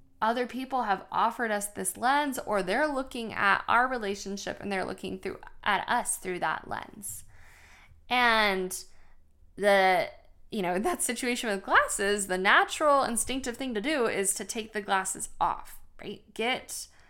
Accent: American